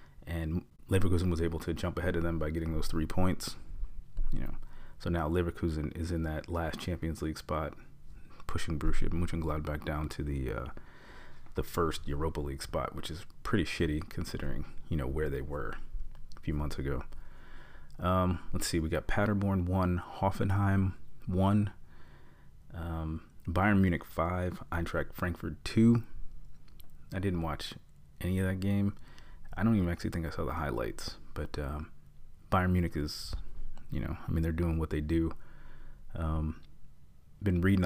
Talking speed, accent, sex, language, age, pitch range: 160 wpm, American, male, English, 30-49, 75-90 Hz